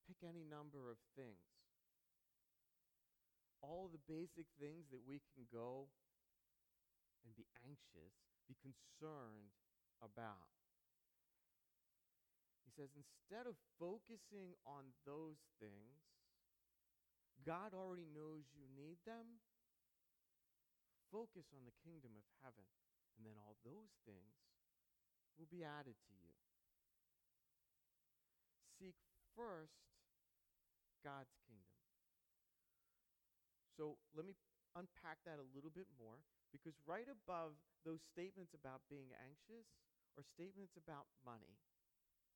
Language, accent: English, American